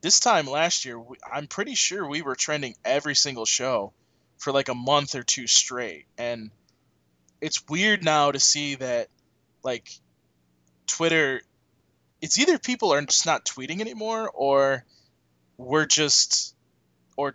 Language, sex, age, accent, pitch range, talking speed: English, male, 20-39, American, 115-155 Hz, 145 wpm